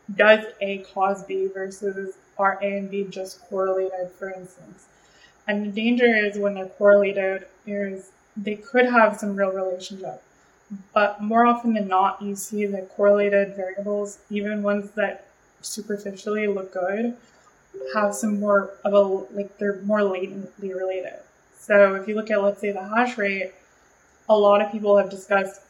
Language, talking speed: English, 160 wpm